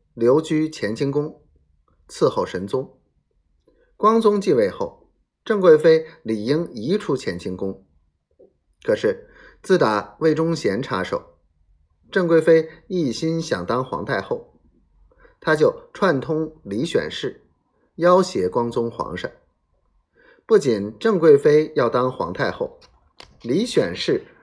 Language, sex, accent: Chinese, male, native